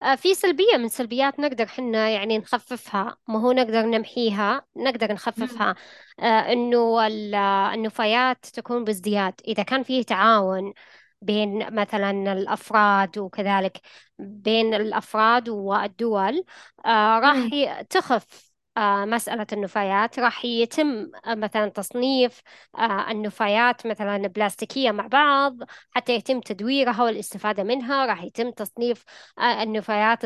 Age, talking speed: 20-39, 100 wpm